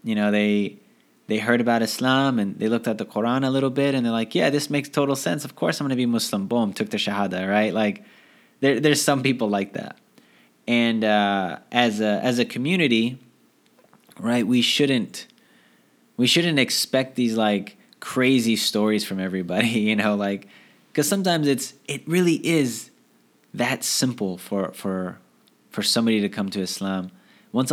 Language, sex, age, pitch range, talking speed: English, male, 20-39, 100-130 Hz, 170 wpm